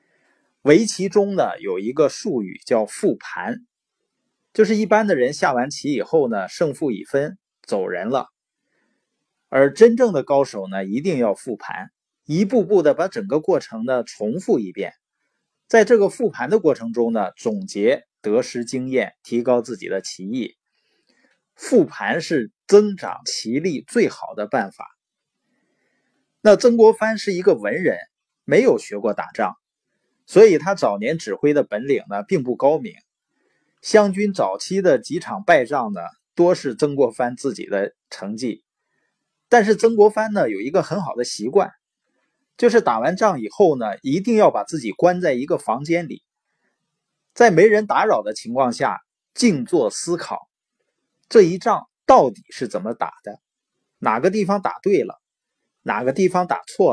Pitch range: 140-235 Hz